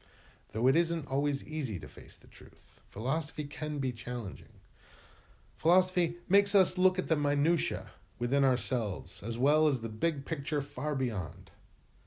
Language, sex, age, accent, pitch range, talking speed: English, male, 40-59, American, 100-150 Hz, 150 wpm